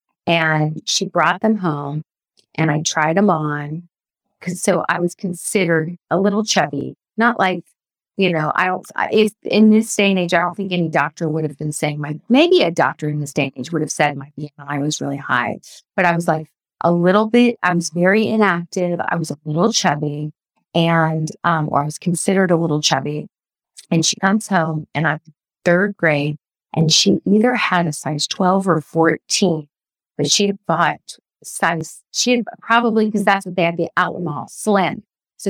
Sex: female